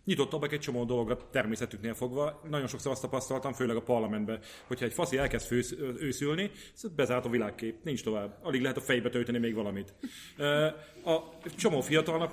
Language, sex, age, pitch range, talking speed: Hungarian, male, 30-49, 115-140 Hz, 170 wpm